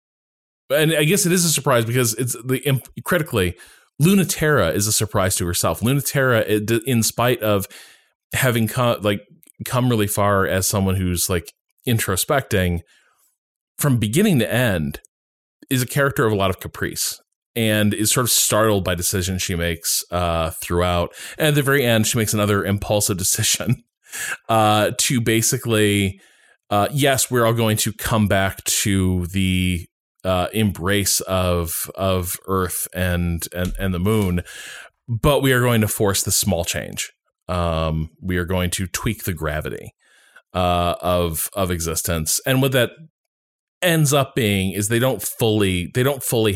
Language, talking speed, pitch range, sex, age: English, 155 wpm, 90-115 Hz, male, 20-39